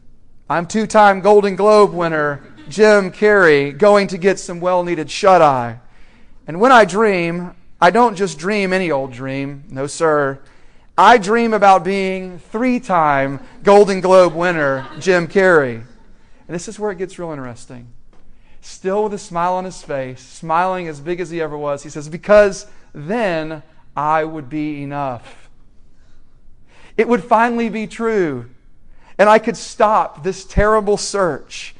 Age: 40-59